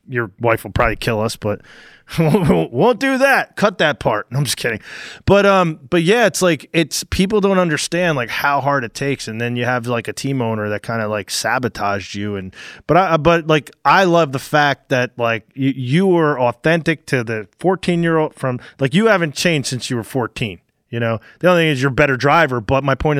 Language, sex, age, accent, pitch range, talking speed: English, male, 20-39, American, 115-155 Hz, 235 wpm